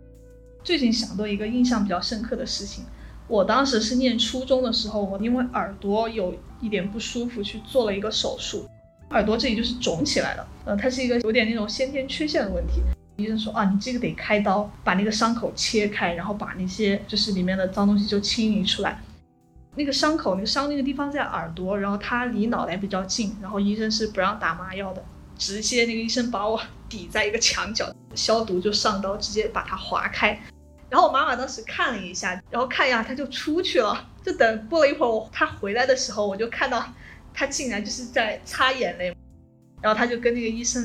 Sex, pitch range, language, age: female, 200-245 Hz, Chinese, 10-29